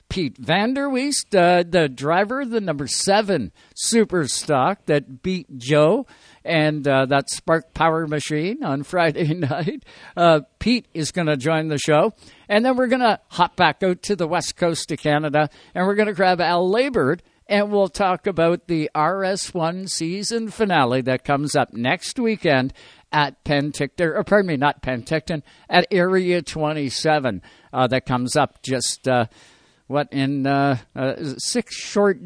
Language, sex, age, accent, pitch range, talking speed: English, male, 60-79, American, 145-190 Hz, 165 wpm